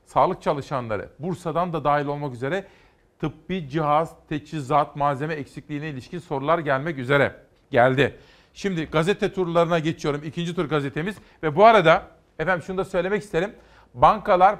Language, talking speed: Turkish, 135 wpm